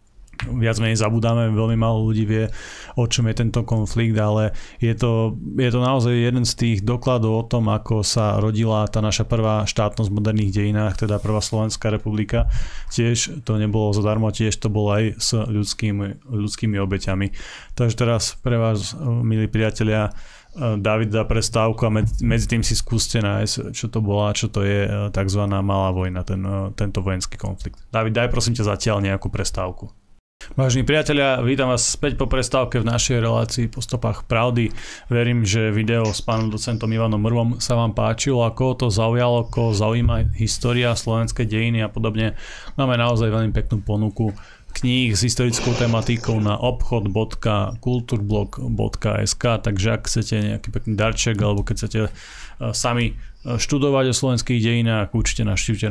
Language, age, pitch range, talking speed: Slovak, 20-39, 105-120 Hz, 160 wpm